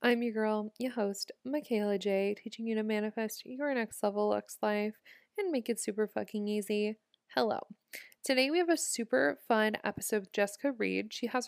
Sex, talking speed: female, 185 wpm